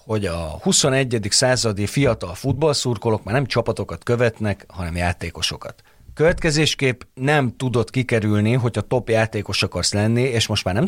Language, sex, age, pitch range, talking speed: Hungarian, male, 30-49, 95-130 Hz, 140 wpm